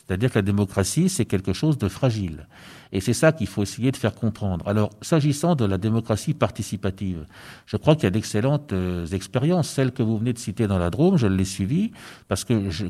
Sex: male